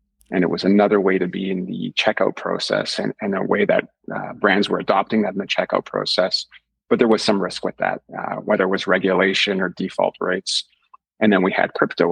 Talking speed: 225 wpm